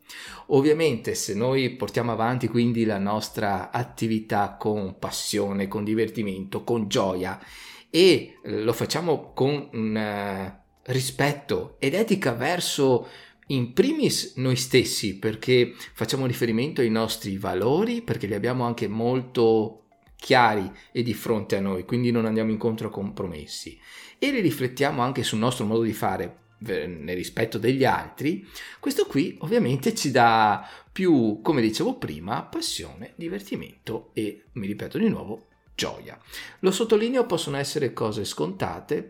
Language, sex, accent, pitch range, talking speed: Italian, male, native, 110-140 Hz, 130 wpm